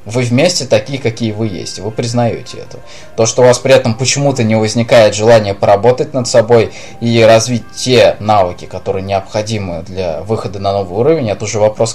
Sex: male